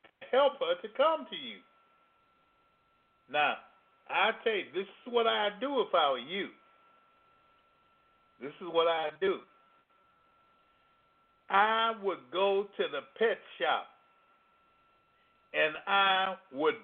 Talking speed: 120 wpm